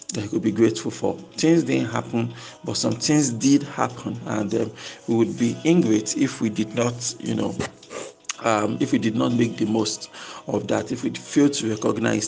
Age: 50-69